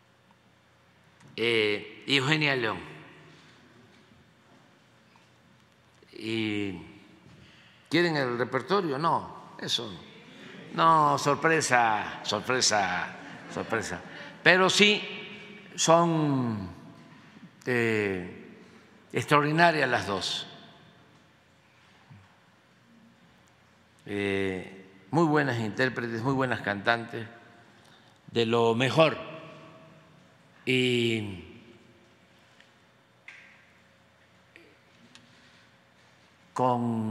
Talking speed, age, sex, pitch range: 50 wpm, 50-69, male, 100-145 Hz